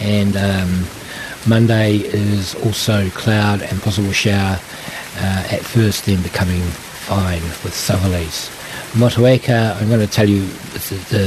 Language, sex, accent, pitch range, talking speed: English, male, Australian, 100-120 Hz, 135 wpm